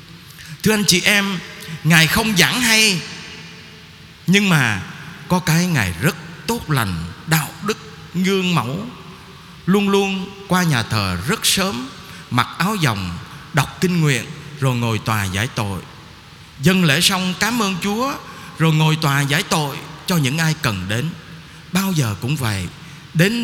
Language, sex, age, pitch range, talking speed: Vietnamese, male, 20-39, 140-185 Hz, 150 wpm